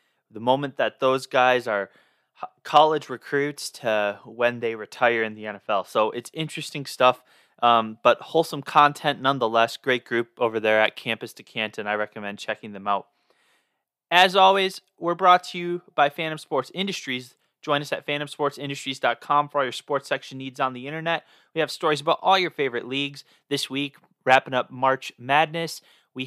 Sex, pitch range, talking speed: male, 125-160 Hz, 170 wpm